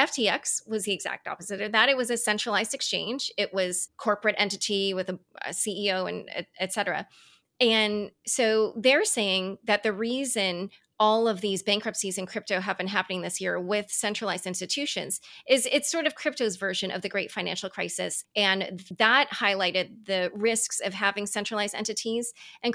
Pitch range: 195-230 Hz